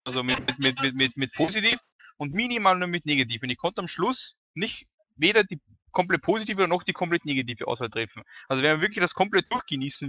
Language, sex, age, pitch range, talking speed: English, male, 20-39, 135-190 Hz, 210 wpm